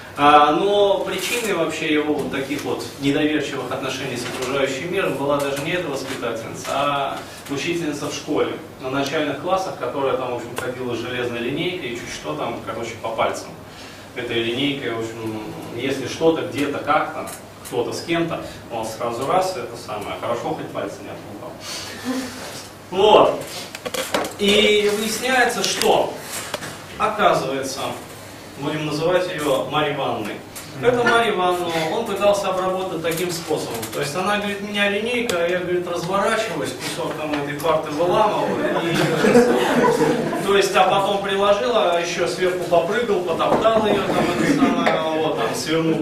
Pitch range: 140-200 Hz